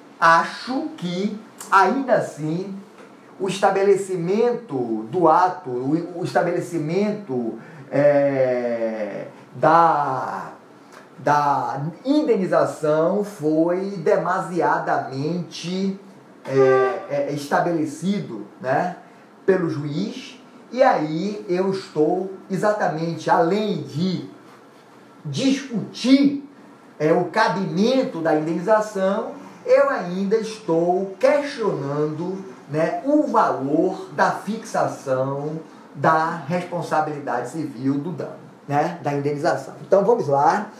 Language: Portuguese